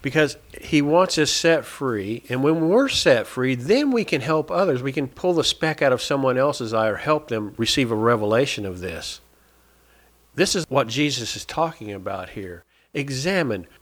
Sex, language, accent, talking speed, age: male, English, American, 185 wpm, 50-69